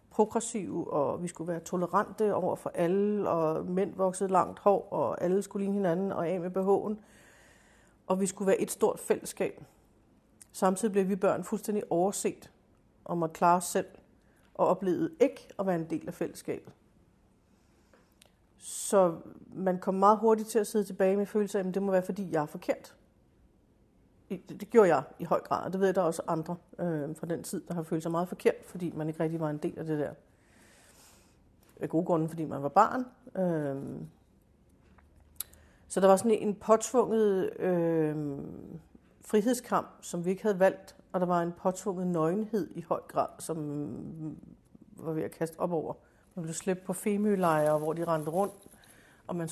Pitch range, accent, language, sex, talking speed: 160-200 Hz, native, Danish, female, 180 wpm